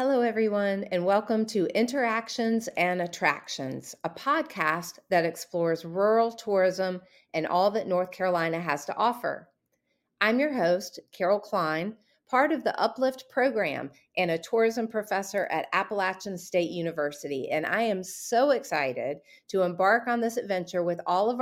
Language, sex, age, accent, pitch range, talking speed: English, female, 40-59, American, 175-230 Hz, 150 wpm